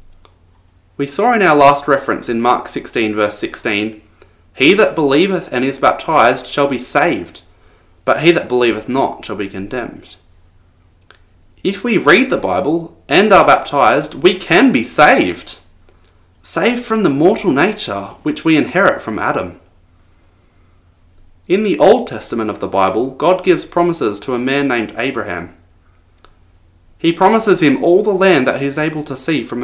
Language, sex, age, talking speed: English, male, 20-39, 160 wpm